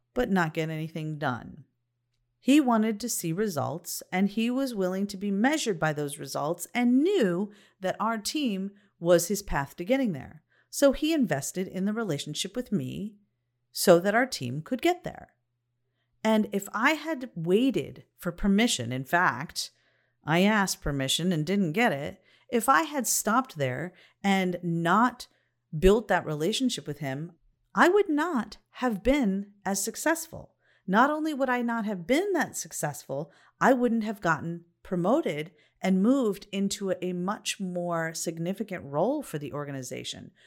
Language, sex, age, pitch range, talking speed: English, female, 40-59, 155-235 Hz, 155 wpm